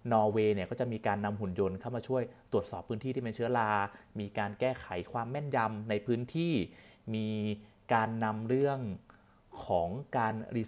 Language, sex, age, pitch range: Thai, male, 30-49, 105-125 Hz